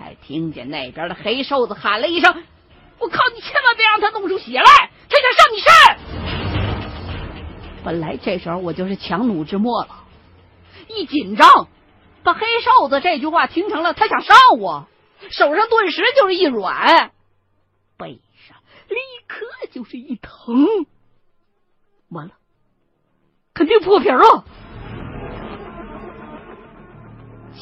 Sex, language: female, Chinese